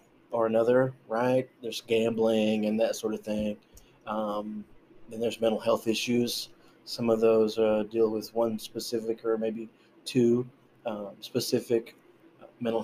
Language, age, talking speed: English, 20-39, 140 wpm